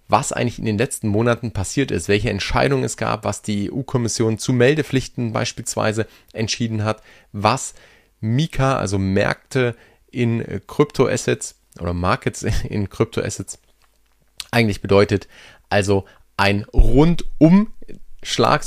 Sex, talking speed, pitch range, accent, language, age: male, 115 wpm, 100-125 Hz, German, German, 30-49